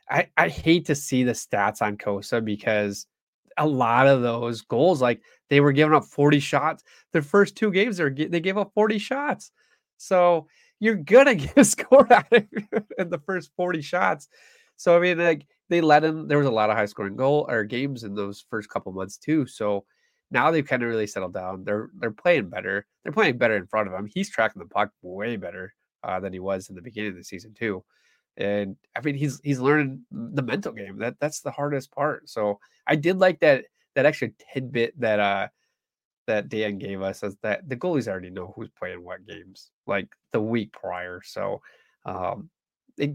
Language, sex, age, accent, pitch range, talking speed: English, male, 20-39, American, 100-160 Hz, 210 wpm